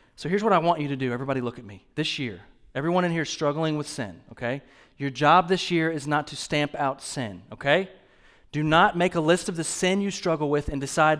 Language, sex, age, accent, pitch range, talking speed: English, male, 30-49, American, 140-175 Hz, 245 wpm